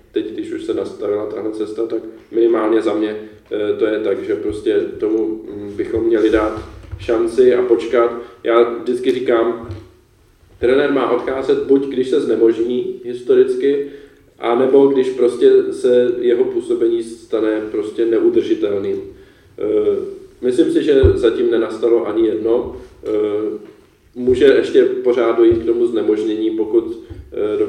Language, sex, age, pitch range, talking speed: Czech, male, 20-39, 345-405 Hz, 125 wpm